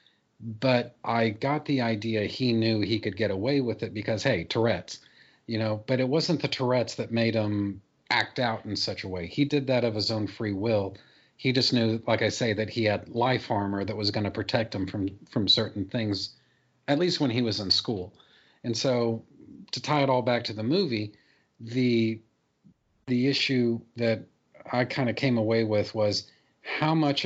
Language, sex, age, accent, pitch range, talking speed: English, male, 40-59, American, 105-125 Hz, 200 wpm